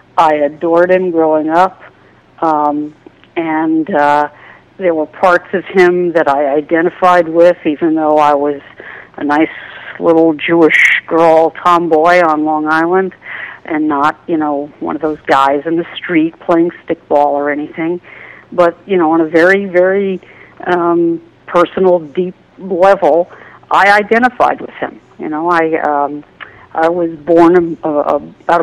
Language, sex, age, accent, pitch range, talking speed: English, female, 60-79, American, 155-185 Hz, 145 wpm